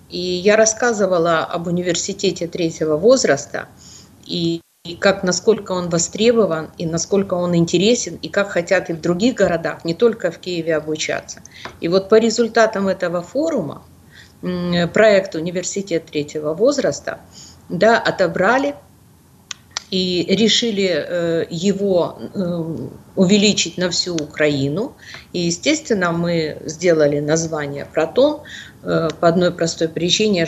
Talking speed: 115 wpm